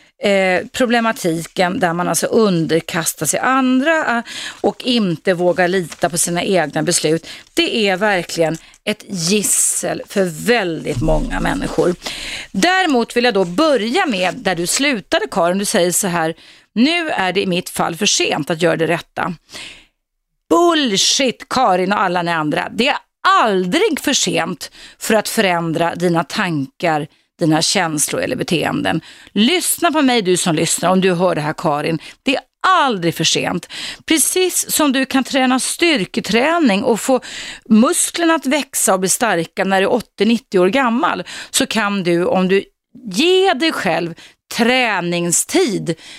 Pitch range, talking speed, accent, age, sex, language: 175-260 Hz, 150 wpm, native, 30-49, female, Swedish